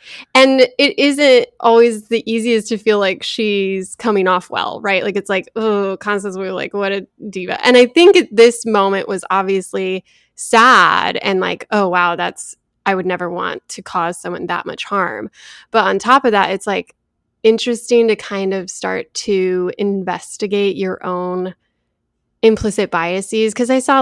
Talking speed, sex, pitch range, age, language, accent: 170 wpm, female, 190-225 Hz, 10-29, English, American